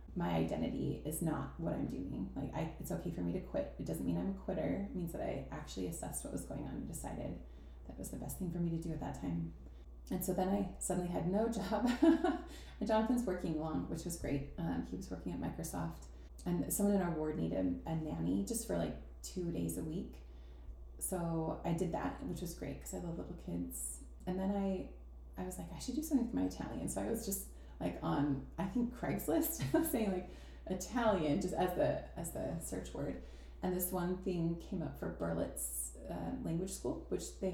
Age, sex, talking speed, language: 30-49, female, 220 wpm, English